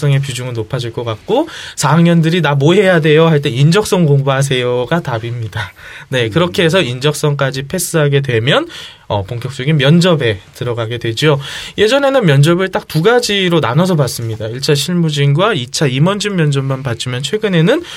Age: 20-39